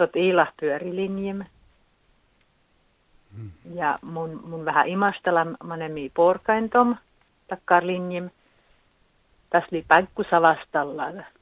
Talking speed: 85 wpm